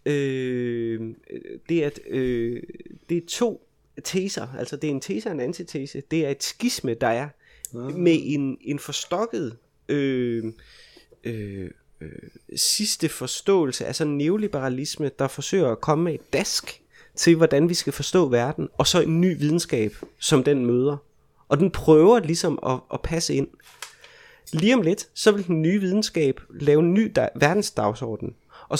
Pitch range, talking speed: 120-165 Hz, 160 wpm